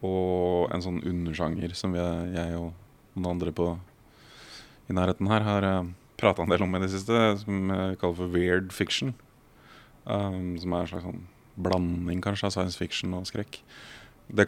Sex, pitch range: male, 90-105 Hz